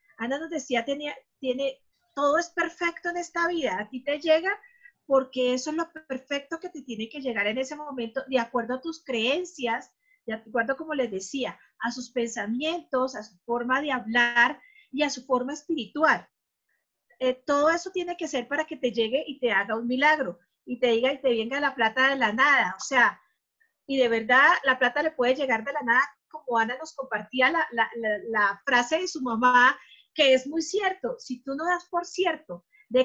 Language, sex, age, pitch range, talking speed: Spanish, female, 40-59, 250-320 Hz, 200 wpm